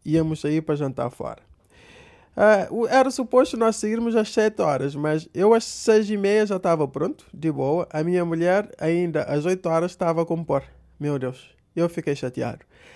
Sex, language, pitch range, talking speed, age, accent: male, Portuguese, 160-215 Hz, 180 wpm, 20-39, Brazilian